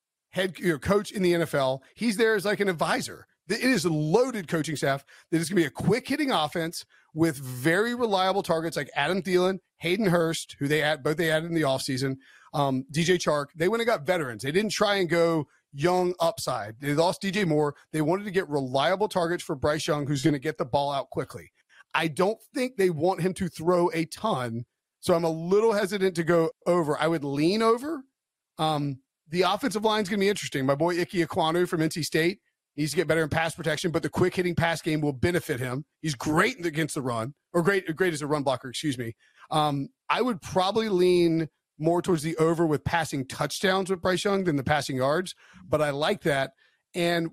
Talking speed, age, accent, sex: 215 wpm, 30-49, American, male